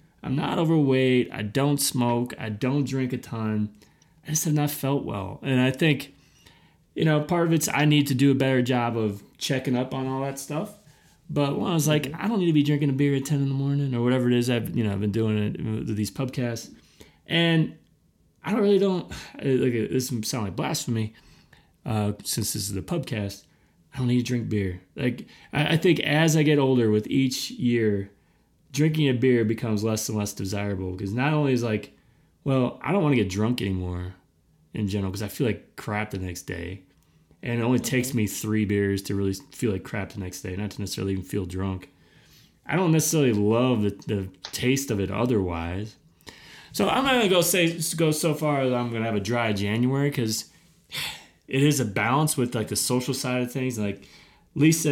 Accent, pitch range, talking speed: American, 105-145 Hz, 215 wpm